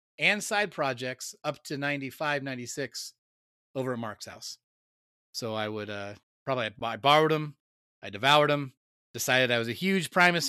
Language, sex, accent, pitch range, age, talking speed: English, male, American, 115-145 Hz, 30-49, 170 wpm